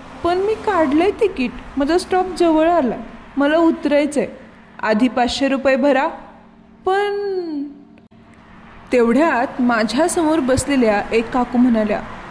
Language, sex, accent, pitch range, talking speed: Marathi, female, native, 235-300 Hz, 110 wpm